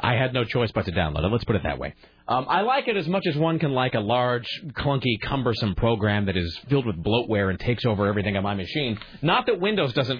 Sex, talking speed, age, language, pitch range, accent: male, 260 wpm, 40-59, English, 105-150 Hz, American